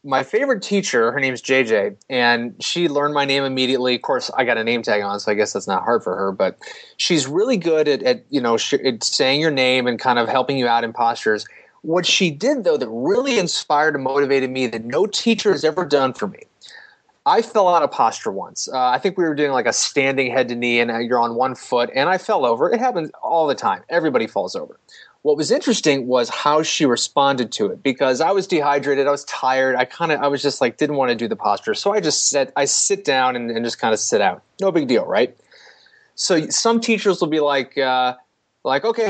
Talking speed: 245 wpm